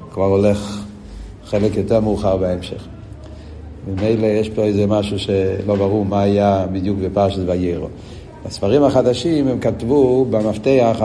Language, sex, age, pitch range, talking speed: Hebrew, male, 60-79, 100-120 Hz, 130 wpm